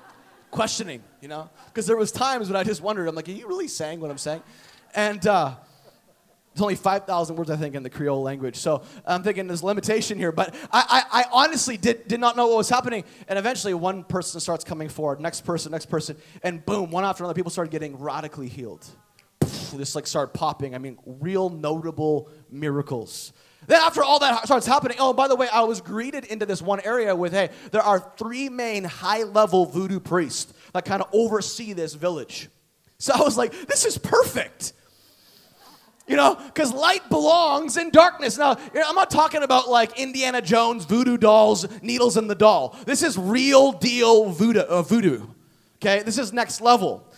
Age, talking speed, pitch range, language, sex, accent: 20-39, 190 wpm, 165-240 Hz, English, male, American